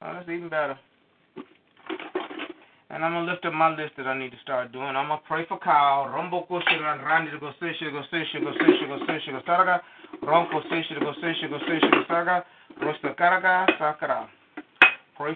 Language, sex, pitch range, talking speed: English, male, 155-215 Hz, 80 wpm